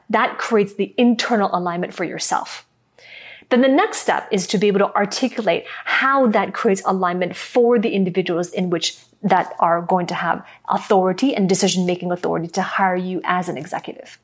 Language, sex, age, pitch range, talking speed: English, female, 30-49, 185-230 Hz, 175 wpm